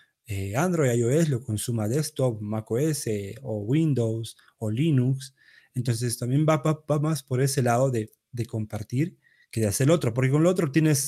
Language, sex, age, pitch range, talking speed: Spanish, male, 30-49, 110-140 Hz, 175 wpm